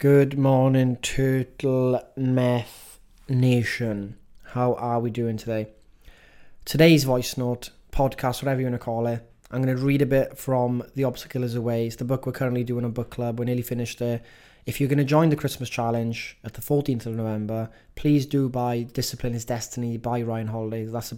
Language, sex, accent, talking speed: English, male, British, 195 wpm